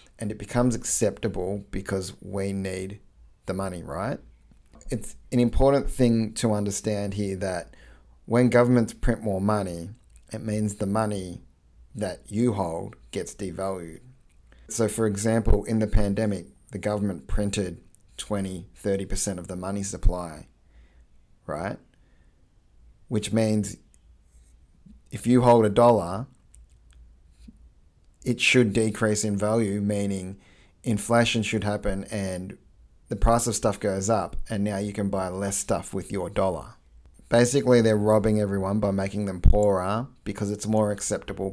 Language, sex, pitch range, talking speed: English, male, 95-110 Hz, 135 wpm